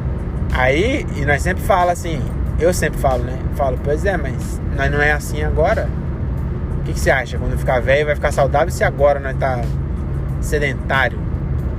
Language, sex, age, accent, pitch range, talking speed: Portuguese, male, 20-39, Brazilian, 65-75 Hz, 180 wpm